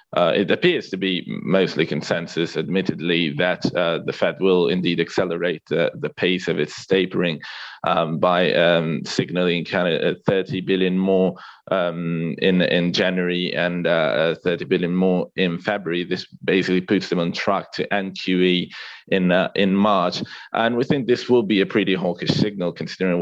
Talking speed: 160 wpm